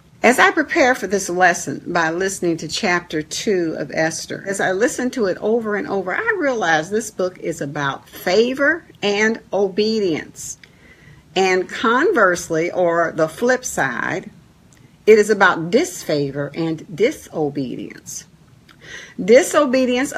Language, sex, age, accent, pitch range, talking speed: English, female, 50-69, American, 165-225 Hz, 130 wpm